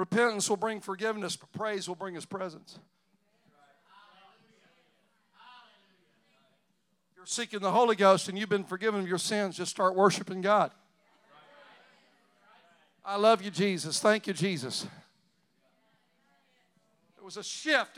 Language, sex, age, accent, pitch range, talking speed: English, male, 60-79, American, 175-205 Hz, 125 wpm